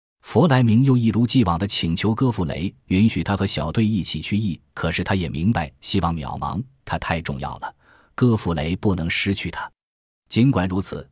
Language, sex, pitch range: Chinese, male, 85-115 Hz